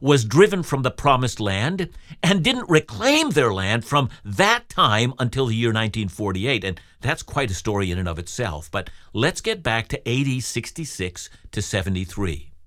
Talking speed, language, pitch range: 170 wpm, English, 110-160 Hz